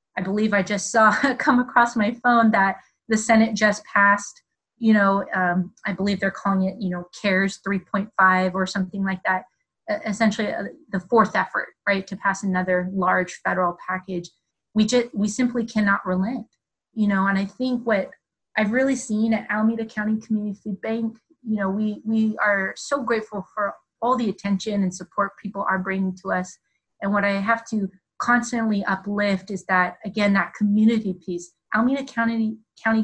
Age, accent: 30-49, American